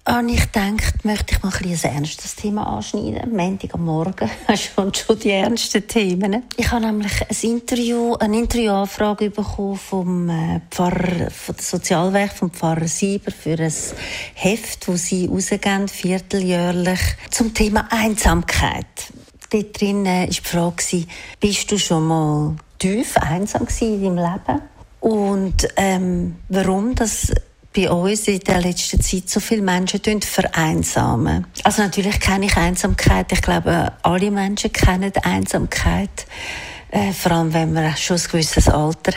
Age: 40-59